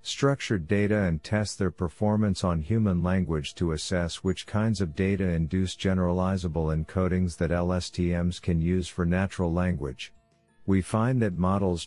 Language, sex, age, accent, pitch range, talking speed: English, male, 50-69, American, 85-100 Hz, 145 wpm